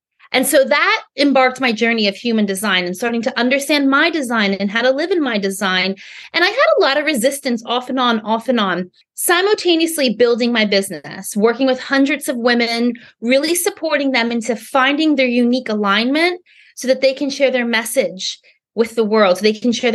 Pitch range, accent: 225-305 Hz, American